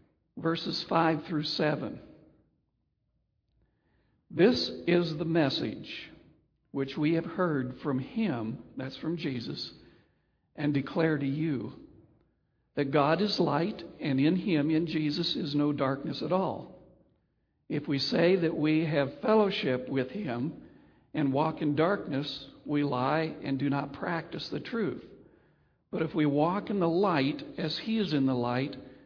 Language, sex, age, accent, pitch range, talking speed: English, male, 60-79, American, 135-165 Hz, 145 wpm